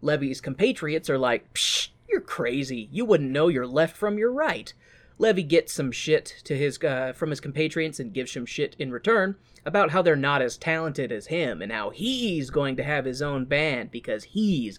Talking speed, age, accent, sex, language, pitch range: 205 wpm, 20-39, American, male, English, 135-215 Hz